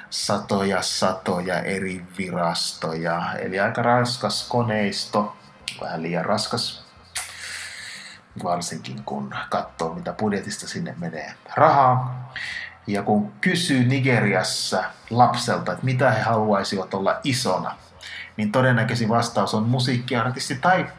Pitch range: 105-135 Hz